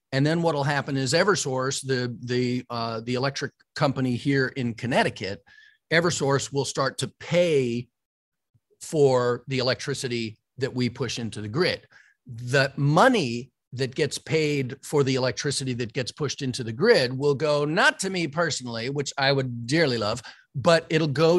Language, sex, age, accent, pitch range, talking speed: English, male, 40-59, American, 130-170 Hz, 160 wpm